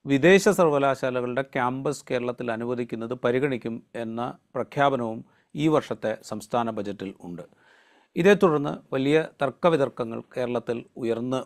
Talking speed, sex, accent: 100 wpm, male, native